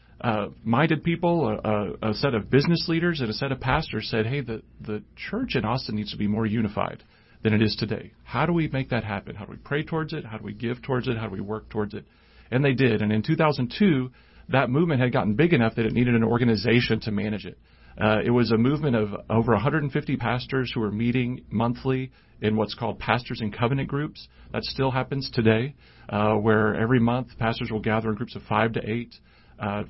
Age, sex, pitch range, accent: 40-59, male, 110-140 Hz, American